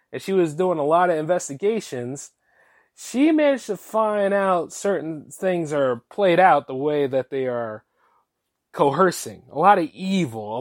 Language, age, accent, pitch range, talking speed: English, 30-49, American, 140-205 Hz, 165 wpm